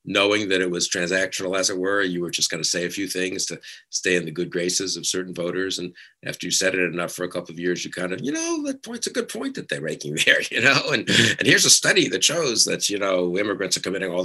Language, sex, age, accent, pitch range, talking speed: English, male, 50-69, American, 80-95 Hz, 280 wpm